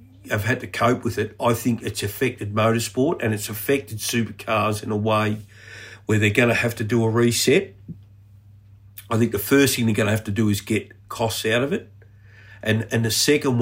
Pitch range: 105-120 Hz